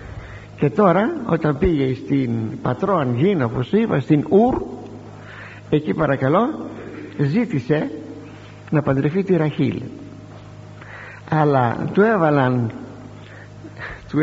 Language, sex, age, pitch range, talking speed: Greek, male, 60-79, 115-165 Hz, 95 wpm